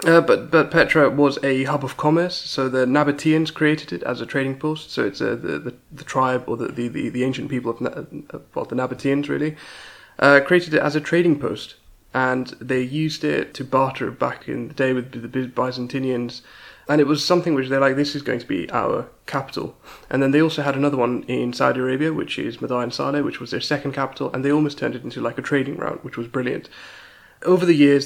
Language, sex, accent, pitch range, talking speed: English, male, British, 125-145 Hz, 230 wpm